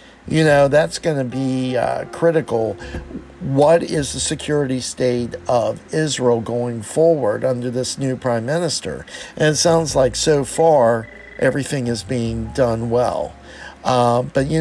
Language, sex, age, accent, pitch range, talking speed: English, male, 50-69, American, 120-155 Hz, 150 wpm